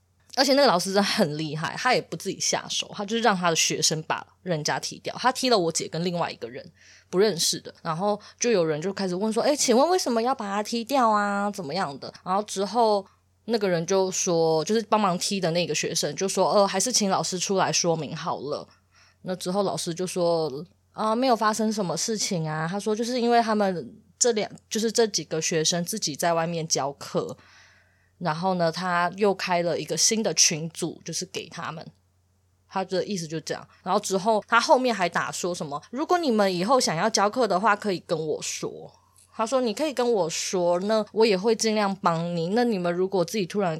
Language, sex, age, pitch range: Chinese, female, 20-39, 165-220 Hz